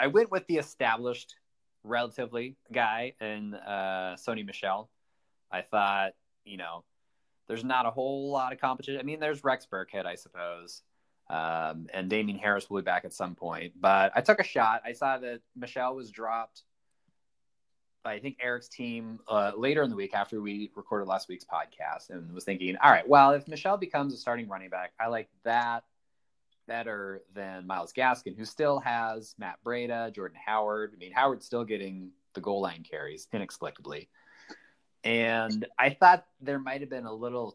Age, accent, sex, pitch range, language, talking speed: 20-39, American, male, 100-135 Hz, English, 180 wpm